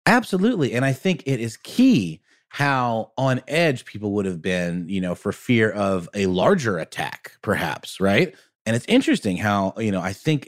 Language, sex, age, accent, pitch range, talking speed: English, male, 30-49, American, 95-135 Hz, 185 wpm